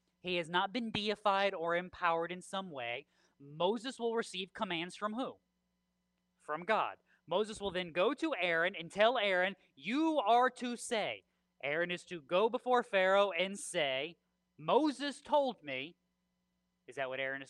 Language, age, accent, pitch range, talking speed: English, 20-39, American, 140-195 Hz, 160 wpm